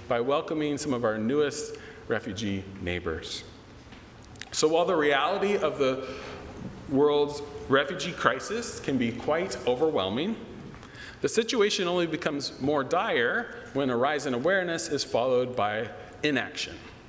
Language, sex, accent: English, male, American